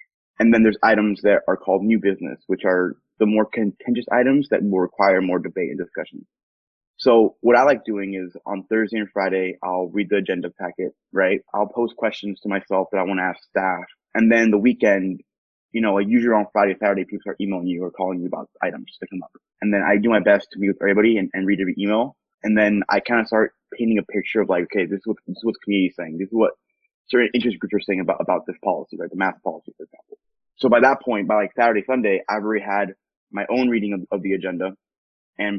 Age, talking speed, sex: 20-39, 250 wpm, male